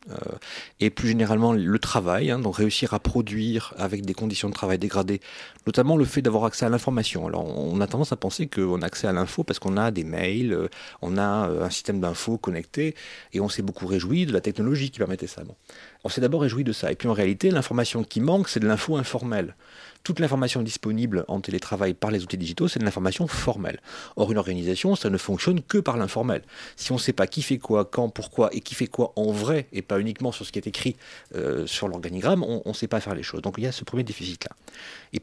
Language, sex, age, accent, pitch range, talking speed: French, male, 30-49, French, 95-125 Hz, 235 wpm